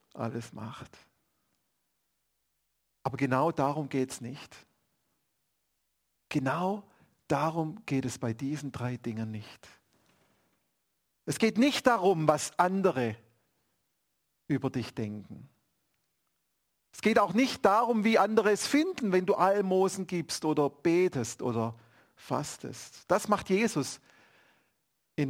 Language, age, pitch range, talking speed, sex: German, 50-69, 120-175 Hz, 110 wpm, male